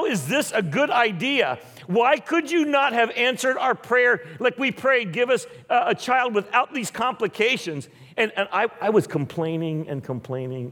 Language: English